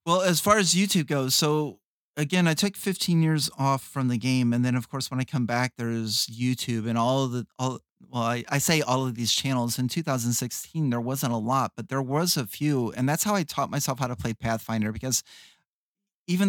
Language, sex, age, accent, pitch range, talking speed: English, male, 30-49, American, 120-140 Hz, 220 wpm